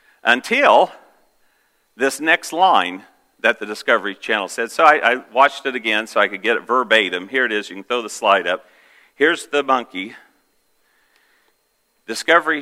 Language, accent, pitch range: English, American, 130-210 Hz